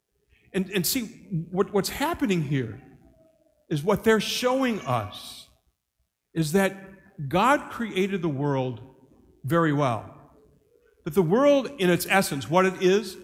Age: 50-69